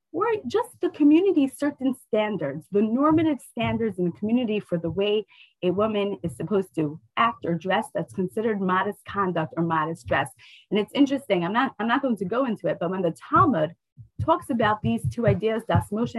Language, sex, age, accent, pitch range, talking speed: English, female, 30-49, American, 175-245 Hz, 195 wpm